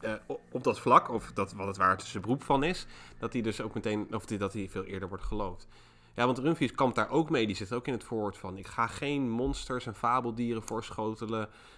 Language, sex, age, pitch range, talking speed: Dutch, male, 30-49, 100-125 Hz, 240 wpm